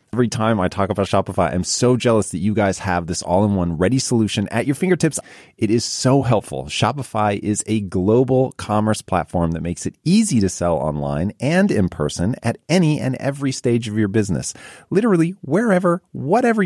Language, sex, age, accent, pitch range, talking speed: English, male, 30-49, American, 85-125 Hz, 185 wpm